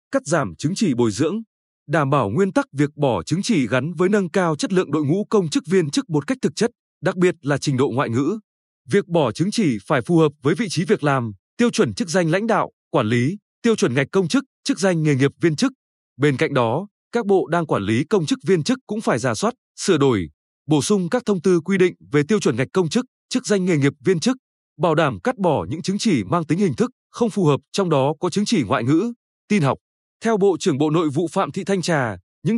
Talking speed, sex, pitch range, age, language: 255 wpm, male, 145-210 Hz, 20-39, Vietnamese